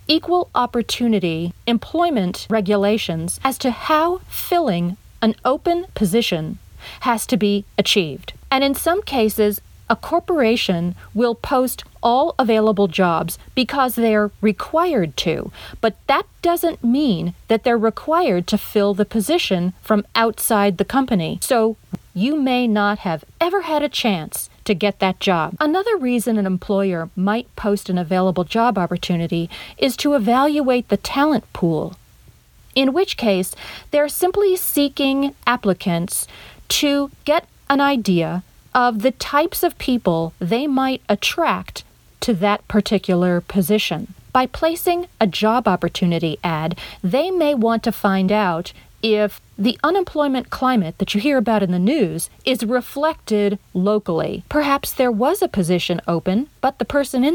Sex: female